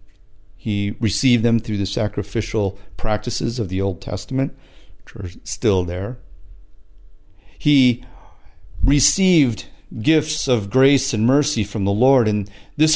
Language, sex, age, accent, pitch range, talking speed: English, male, 50-69, American, 95-125 Hz, 125 wpm